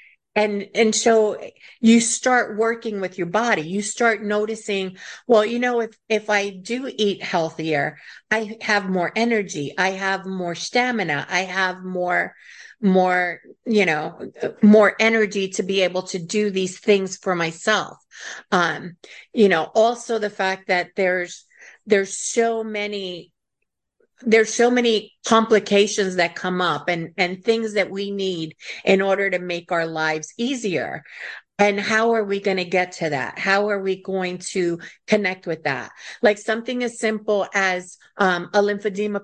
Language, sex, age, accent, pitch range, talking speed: English, female, 50-69, American, 185-225 Hz, 155 wpm